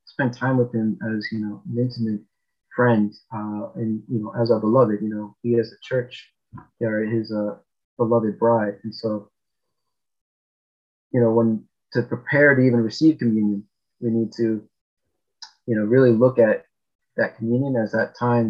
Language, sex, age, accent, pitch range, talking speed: English, male, 30-49, American, 110-120 Hz, 170 wpm